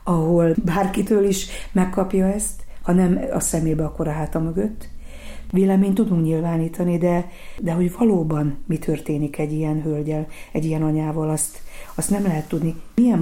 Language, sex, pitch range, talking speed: Hungarian, female, 155-185 Hz, 155 wpm